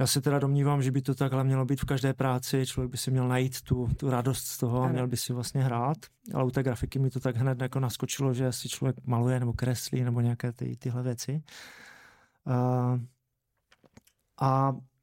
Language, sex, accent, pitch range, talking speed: Czech, male, native, 130-155 Hz, 195 wpm